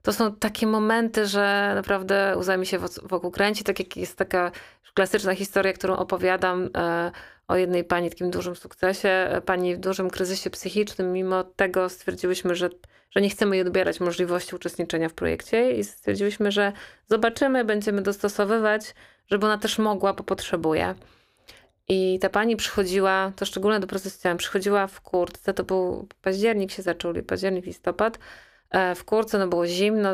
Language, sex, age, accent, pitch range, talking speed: Polish, female, 30-49, native, 175-200 Hz, 155 wpm